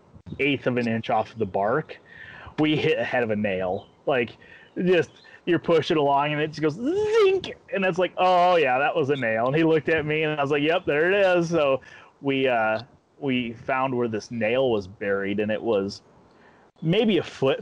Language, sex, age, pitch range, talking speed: English, male, 30-49, 130-165 Hz, 205 wpm